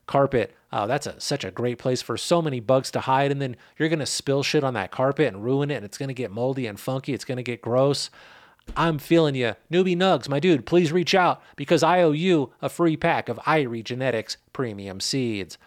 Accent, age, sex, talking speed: American, 30-49, male, 235 wpm